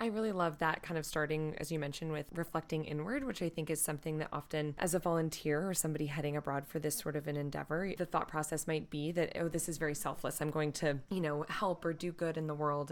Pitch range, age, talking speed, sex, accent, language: 145-165 Hz, 20-39, 260 wpm, female, American, English